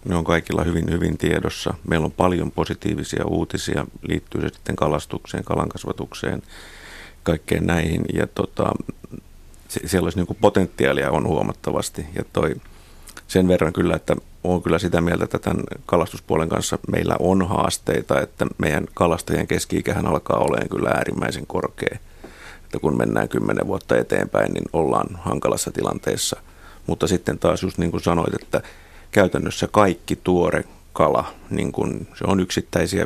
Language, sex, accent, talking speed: Finnish, male, native, 145 wpm